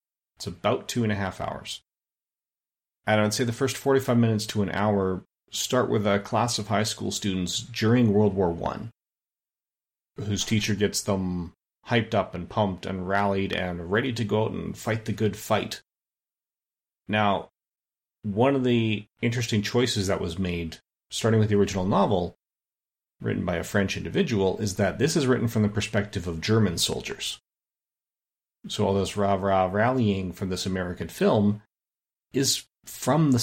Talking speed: 165 wpm